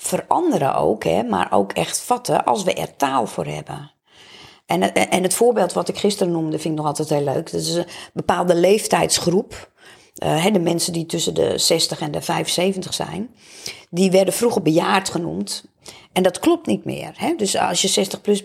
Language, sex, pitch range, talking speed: Dutch, female, 170-210 Hz, 180 wpm